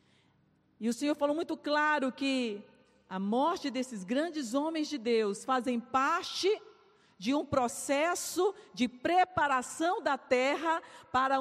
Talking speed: 125 wpm